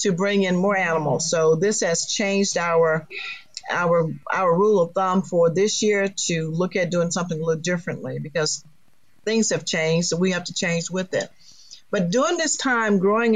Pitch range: 165-205 Hz